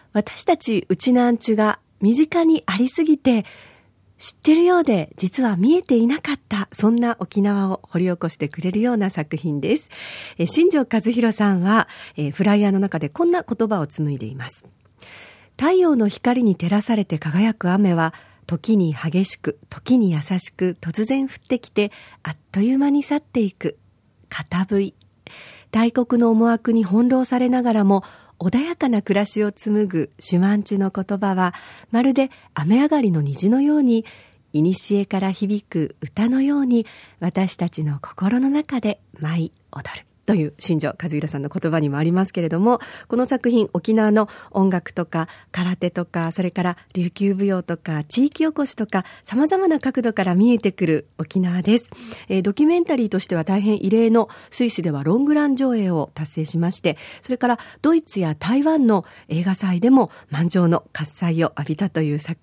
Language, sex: Japanese, female